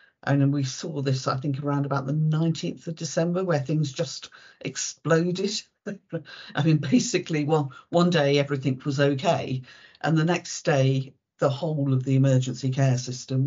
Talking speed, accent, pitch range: 160 wpm, British, 130-155 Hz